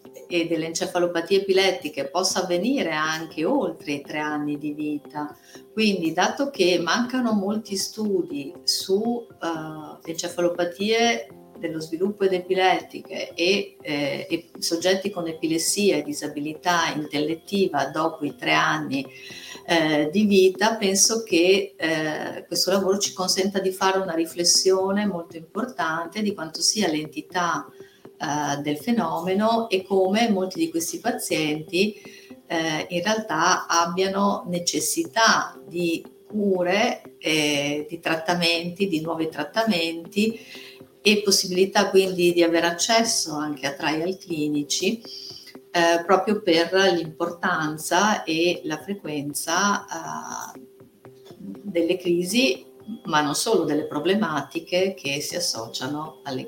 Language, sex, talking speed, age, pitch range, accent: Italian, female, 115 wpm, 50-69, 155-195 Hz, native